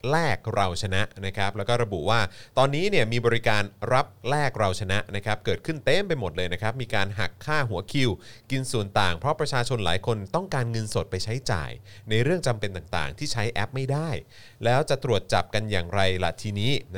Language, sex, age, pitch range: Thai, male, 30-49, 100-130 Hz